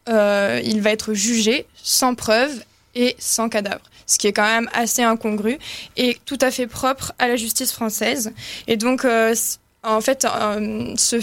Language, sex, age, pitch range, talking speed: French, female, 20-39, 220-250 Hz, 180 wpm